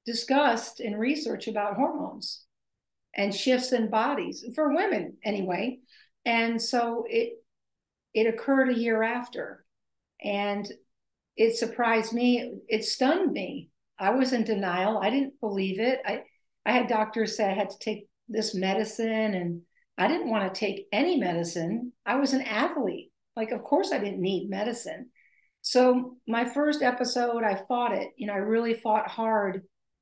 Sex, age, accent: female, 50-69, American